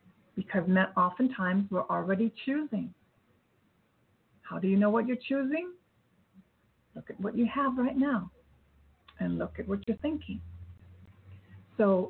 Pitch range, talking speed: 180-220 Hz, 130 wpm